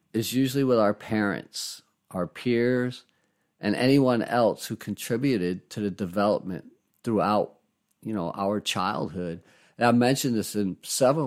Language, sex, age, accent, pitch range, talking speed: English, male, 50-69, American, 100-125 Hz, 140 wpm